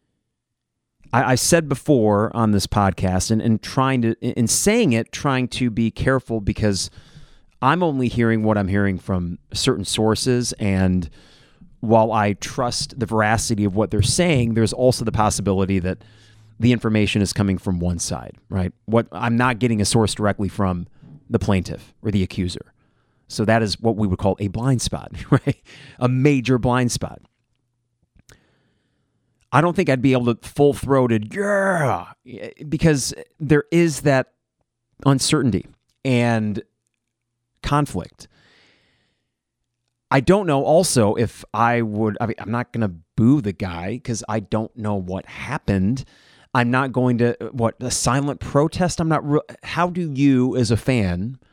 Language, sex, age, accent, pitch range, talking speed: English, male, 30-49, American, 105-130 Hz, 155 wpm